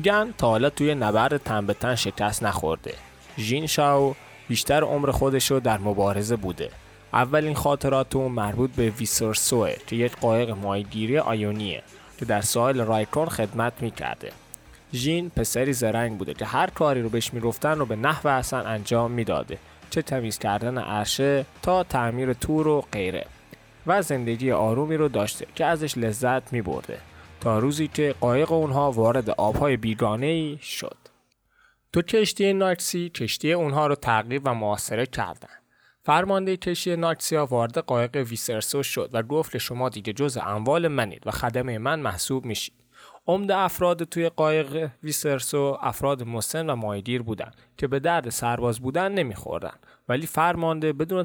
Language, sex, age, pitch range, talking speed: Persian, male, 20-39, 115-150 Hz, 145 wpm